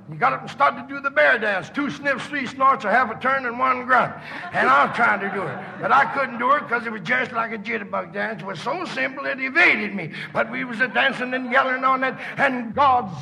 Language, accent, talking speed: English, American, 260 wpm